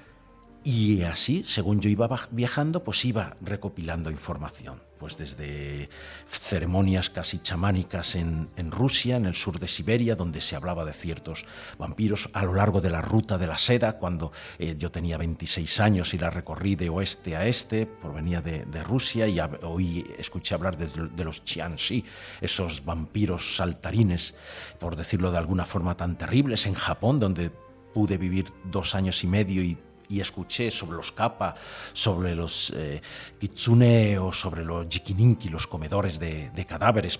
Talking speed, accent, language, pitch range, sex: 165 wpm, Spanish, Spanish, 85-100 Hz, male